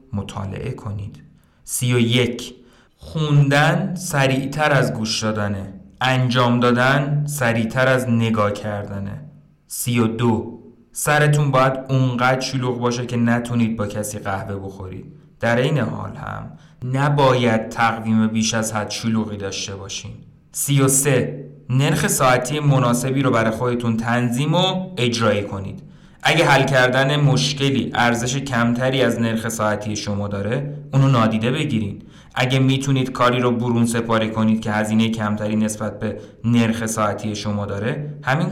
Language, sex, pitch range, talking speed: Persian, male, 110-140 Hz, 130 wpm